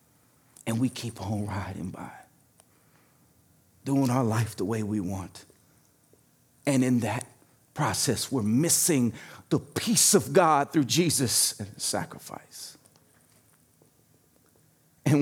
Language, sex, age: English, male, 40-59